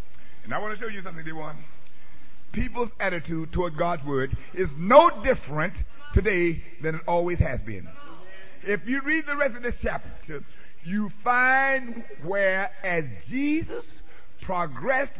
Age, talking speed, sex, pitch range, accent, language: 60-79, 145 wpm, male, 160-255 Hz, American, English